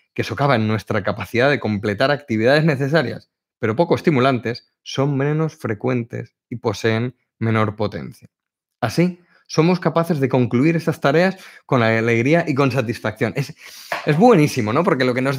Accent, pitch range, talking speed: Spanish, 120-165 Hz, 150 wpm